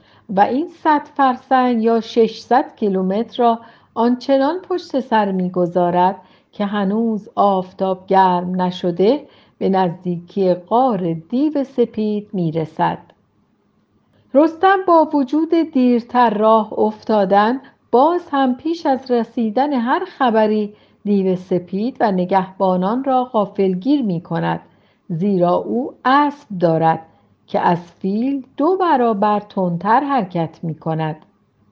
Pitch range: 185-255 Hz